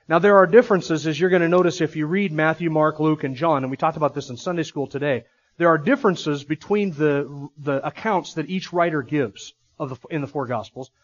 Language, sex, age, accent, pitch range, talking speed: English, male, 40-59, American, 140-185 Hz, 235 wpm